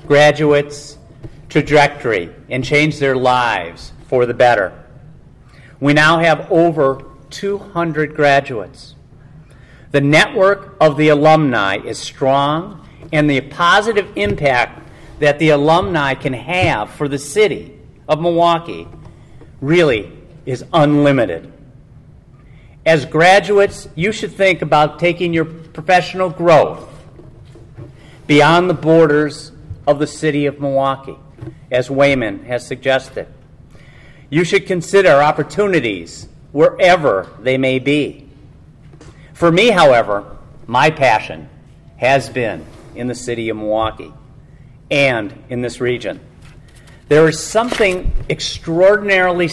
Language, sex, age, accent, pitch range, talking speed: English, male, 50-69, American, 135-160 Hz, 110 wpm